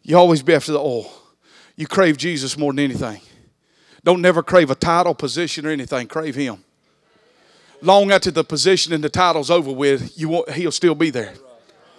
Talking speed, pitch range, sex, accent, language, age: 175 wpm, 165-230 Hz, male, American, English, 40-59